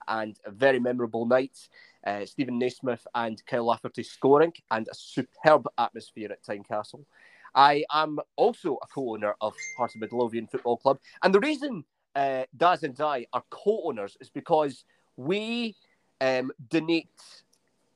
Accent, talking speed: British, 145 wpm